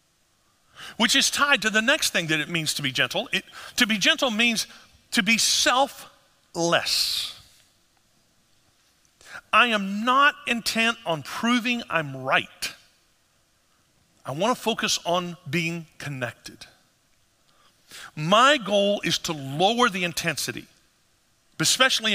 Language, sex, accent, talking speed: English, male, American, 115 wpm